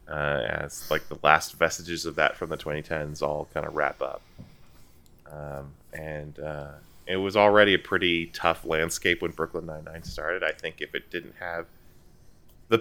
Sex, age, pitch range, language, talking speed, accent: male, 20-39, 75-95 Hz, English, 175 wpm, American